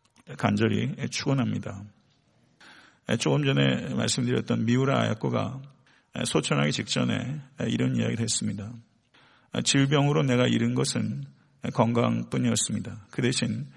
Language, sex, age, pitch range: Korean, male, 50-69, 80-125 Hz